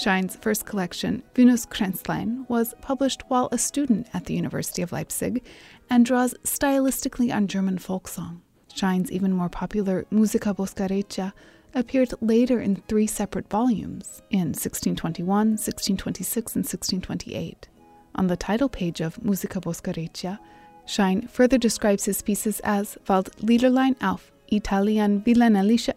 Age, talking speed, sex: 30-49, 130 wpm, female